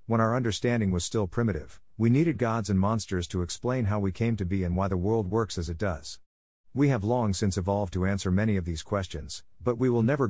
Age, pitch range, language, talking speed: 50-69, 90-115 Hz, English, 240 wpm